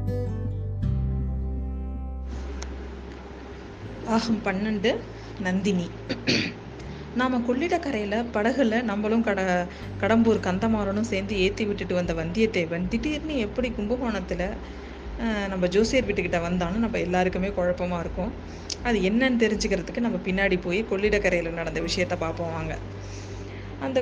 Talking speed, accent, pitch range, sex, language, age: 95 wpm, native, 180-220 Hz, female, Tamil, 20-39